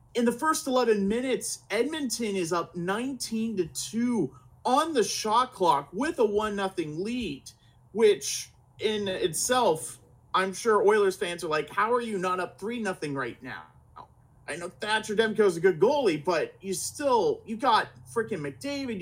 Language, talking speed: English, 165 wpm